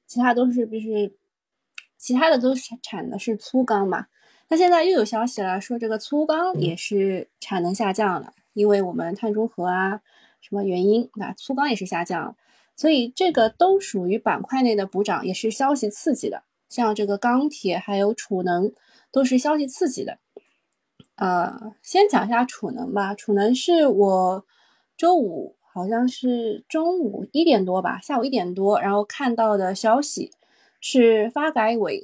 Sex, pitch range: female, 205-270 Hz